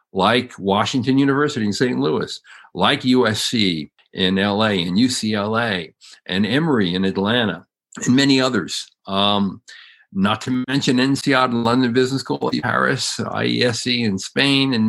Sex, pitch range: male, 95-115 Hz